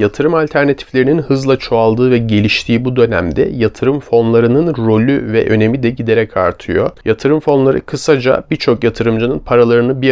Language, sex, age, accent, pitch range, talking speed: Turkish, male, 40-59, native, 110-130 Hz, 135 wpm